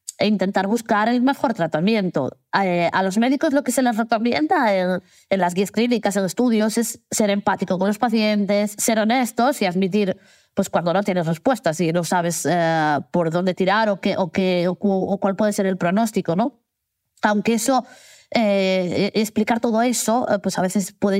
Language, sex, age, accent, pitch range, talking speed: Spanish, female, 20-39, Spanish, 180-230 Hz, 180 wpm